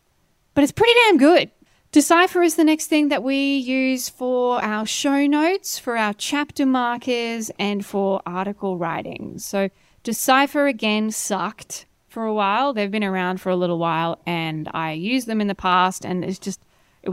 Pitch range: 185-250 Hz